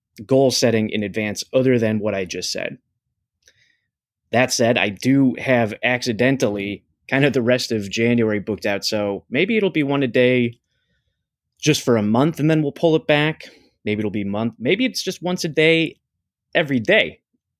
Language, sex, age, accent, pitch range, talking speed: English, male, 20-39, American, 100-125 Hz, 185 wpm